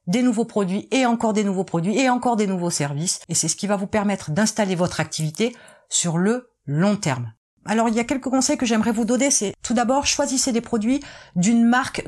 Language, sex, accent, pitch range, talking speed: French, female, French, 190-250 Hz, 225 wpm